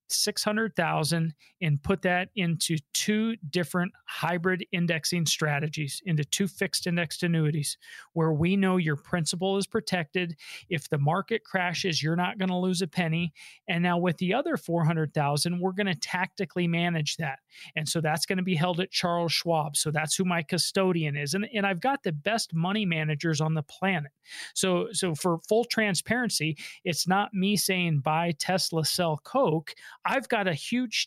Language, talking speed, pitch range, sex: English, 180 wpm, 165-195 Hz, male